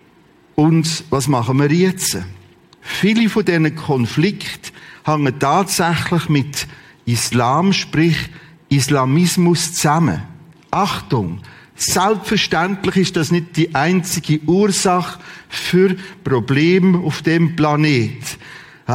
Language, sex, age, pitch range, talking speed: German, male, 50-69, 140-180 Hz, 90 wpm